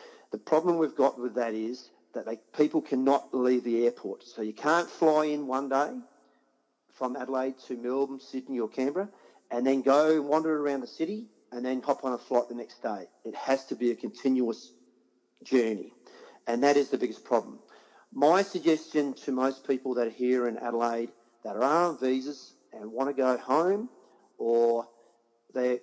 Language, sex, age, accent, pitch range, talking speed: English, male, 40-59, Australian, 120-145 Hz, 180 wpm